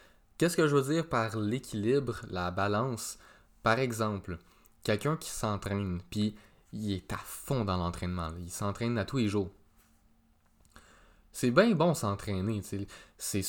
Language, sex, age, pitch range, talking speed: French, male, 20-39, 95-125 Hz, 140 wpm